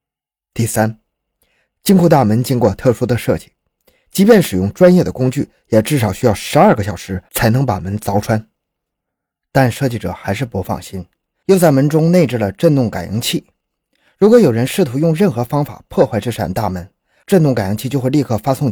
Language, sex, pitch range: Chinese, male, 105-155 Hz